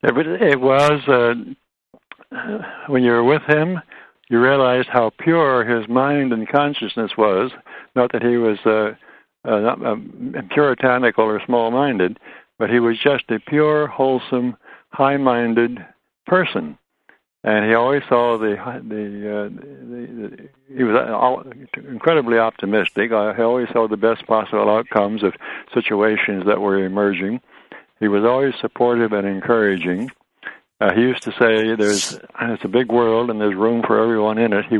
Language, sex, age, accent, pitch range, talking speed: English, male, 60-79, American, 105-130 Hz, 145 wpm